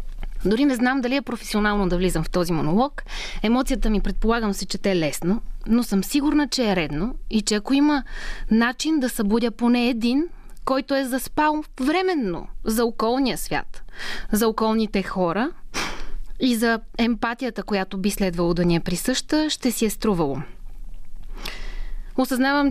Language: Bulgarian